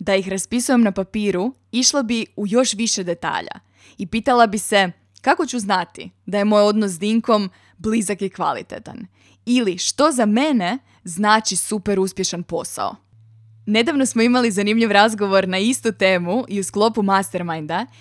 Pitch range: 180-220 Hz